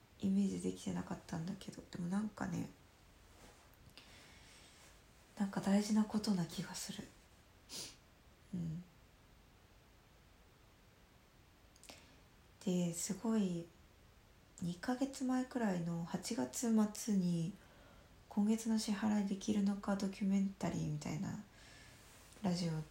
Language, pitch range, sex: Japanese, 165-215 Hz, female